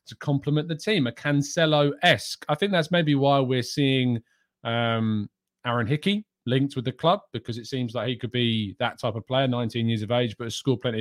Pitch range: 115-150 Hz